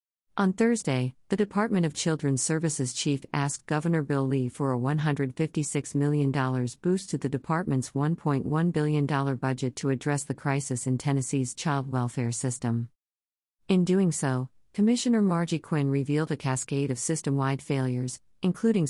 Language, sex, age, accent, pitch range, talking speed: English, female, 50-69, American, 130-155 Hz, 145 wpm